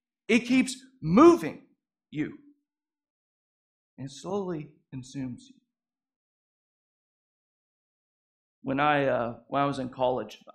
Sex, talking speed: male, 90 wpm